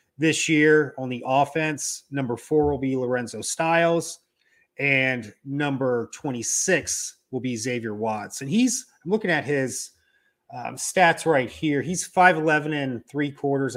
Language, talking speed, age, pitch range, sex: English, 145 wpm, 30-49, 120-160 Hz, male